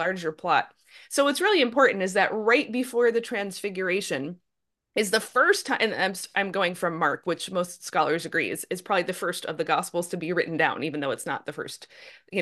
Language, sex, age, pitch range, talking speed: English, female, 30-49, 185-250 Hz, 210 wpm